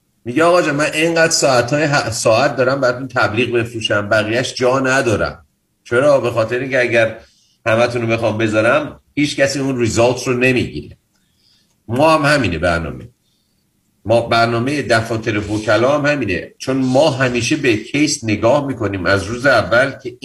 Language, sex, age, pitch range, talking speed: Persian, male, 50-69, 110-140 Hz, 150 wpm